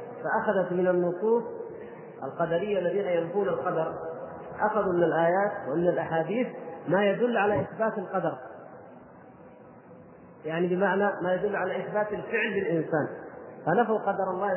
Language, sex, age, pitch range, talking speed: Arabic, male, 40-59, 180-220 Hz, 115 wpm